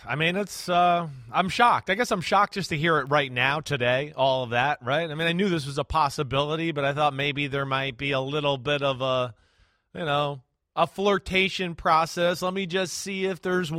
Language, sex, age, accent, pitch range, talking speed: English, male, 30-49, American, 145-185 Hz, 225 wpm